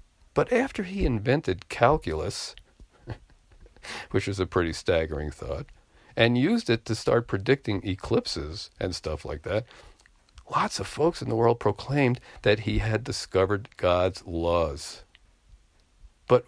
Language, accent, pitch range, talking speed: English, American, 90-125 Hz, 130 wpm